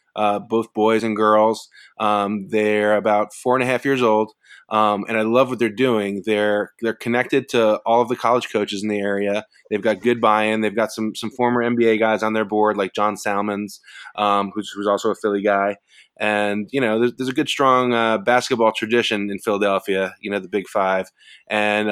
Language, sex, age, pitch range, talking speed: English, male, 20-39, 105-115 Hz, 210 wpm